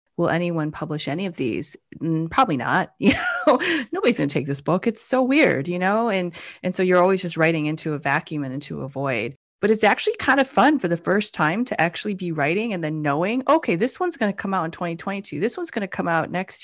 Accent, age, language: American, 30-49, English